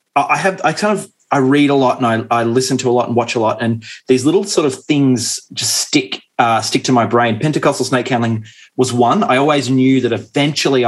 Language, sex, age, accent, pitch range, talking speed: English, male, 30-49, Australian, 115-140 Hz, 235 wpm